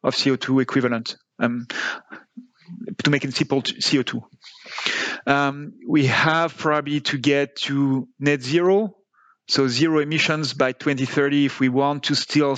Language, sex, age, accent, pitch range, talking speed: English, male, 40-59, French, 130-160 Hz, 135 wpm